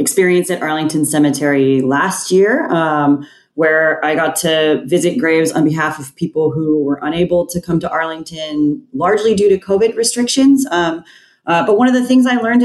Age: 30-49